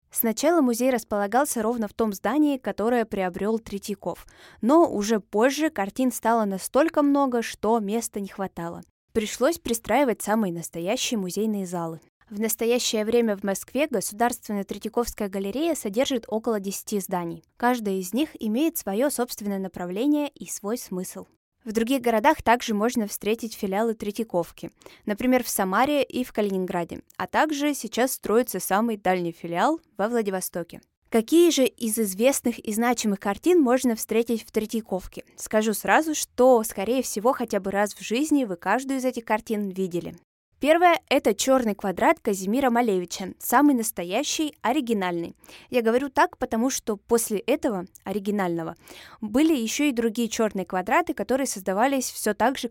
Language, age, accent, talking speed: Russian, 20-39, native, 145 wpm